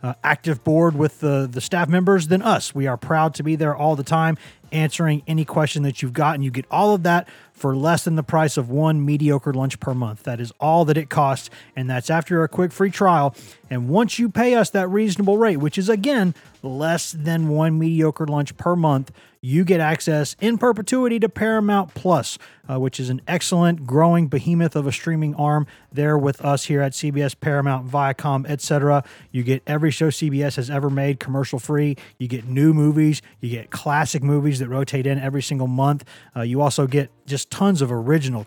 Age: 30-49